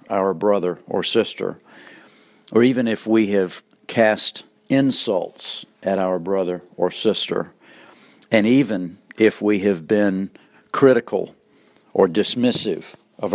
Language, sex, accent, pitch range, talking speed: English, male, American, 95-110 Hz, 115 wpm